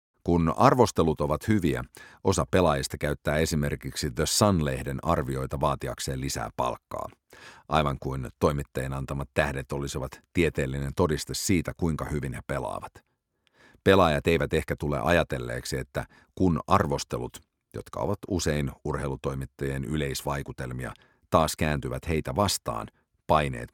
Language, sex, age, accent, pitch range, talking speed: English, male, 50-69, Finnish, 70-85 Hz, 115 wpm